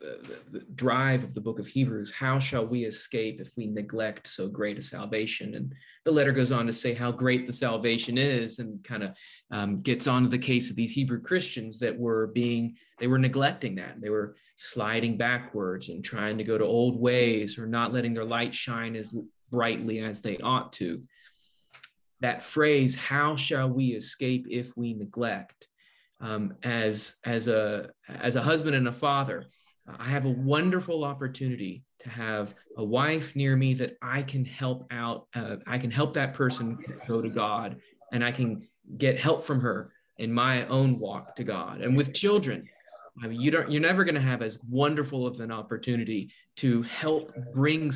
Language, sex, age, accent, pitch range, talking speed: English, male, 30-49, American, 115-140 Hz, 190 wpm